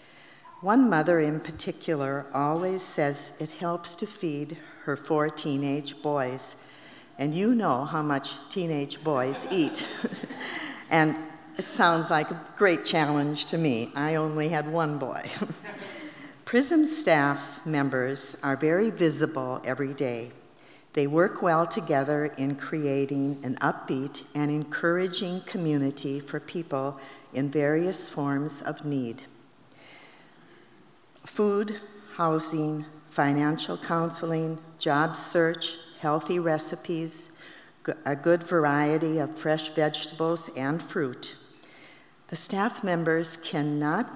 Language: English